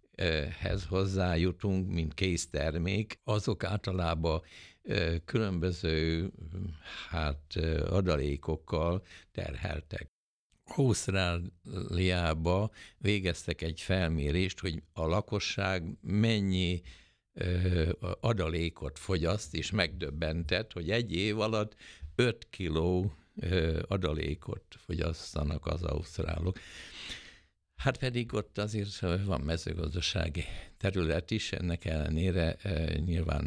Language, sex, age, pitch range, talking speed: Hungarian, male, 60-79, 80-95 Hz, 75 wpm